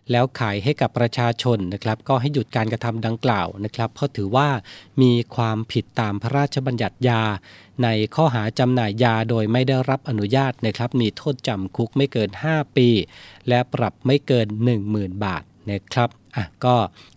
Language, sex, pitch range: Thai, male, 110-135 Hz